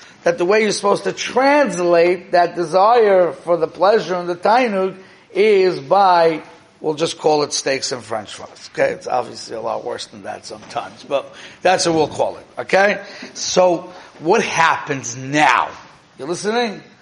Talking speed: 165 wpm